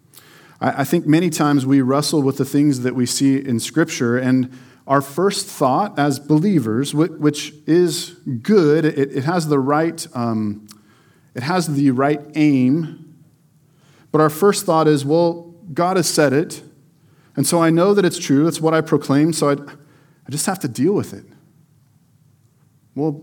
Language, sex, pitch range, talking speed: English, male, 130-160 Hz, 165 wpm